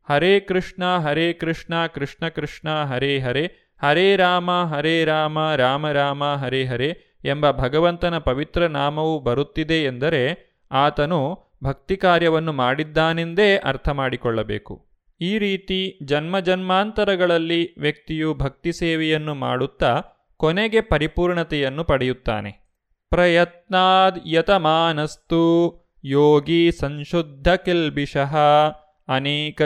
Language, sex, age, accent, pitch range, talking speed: Kannada, male, 30-49, native, 140-175 Hz, 90 wpm